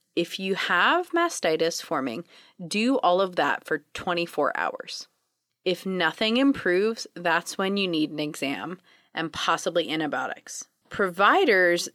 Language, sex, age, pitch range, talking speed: English, female, 30-49, 170-245 Hz, 125 wpm